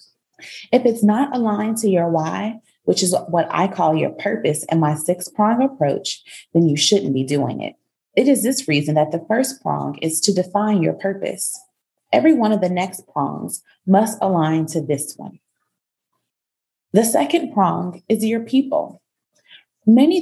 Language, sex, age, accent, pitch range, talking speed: English, female, 30-49, American, 160-220 Hz, 165 wpm